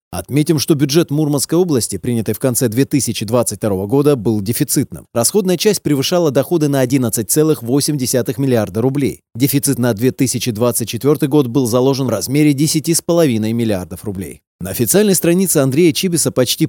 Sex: male